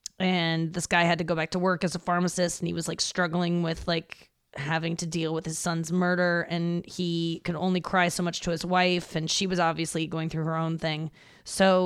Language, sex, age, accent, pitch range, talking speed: English, female, 20-39, American, 170-195 Hz, 235 wpm